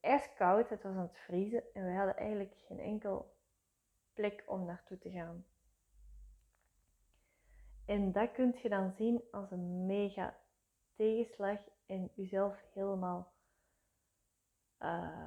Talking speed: 125 wpm